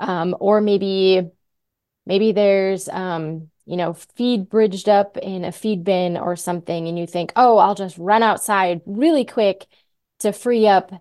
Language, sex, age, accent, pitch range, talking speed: English, female, 20-39, American, 170-205 Hz, 165 wpm